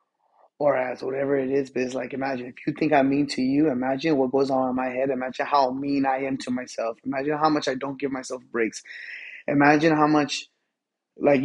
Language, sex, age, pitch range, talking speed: English, male, 20-39, 135-170 Hz, 220 wpm